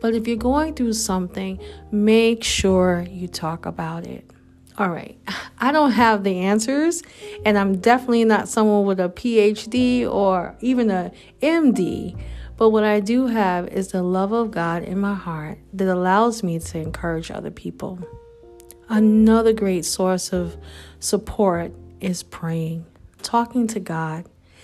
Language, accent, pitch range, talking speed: English, American, 185-230 Hz, 150 wpm